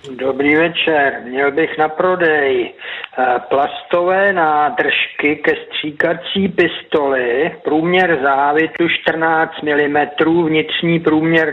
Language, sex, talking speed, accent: Czech, male, 90 wpm, native